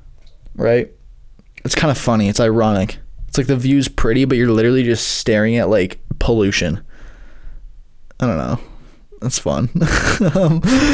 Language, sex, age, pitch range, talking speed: English, male, 10-29, 115-145 Hz, 145 wpm